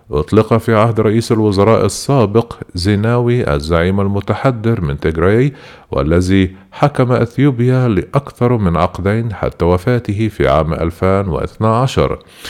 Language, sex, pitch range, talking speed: Arabic, male, 90-115 Hz, 105 wpm